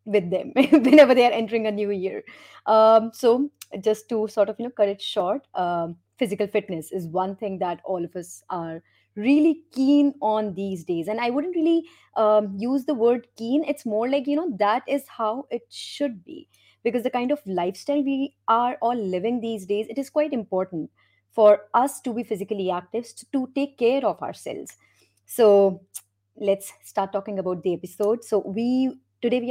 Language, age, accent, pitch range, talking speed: English, 30-49, Indian, 180-235 Hz, 190 wpm